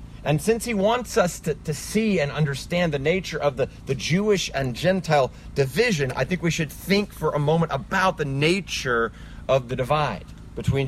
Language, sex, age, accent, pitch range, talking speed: English, male, 30-49, American, 130-170 Hz, 190 wpm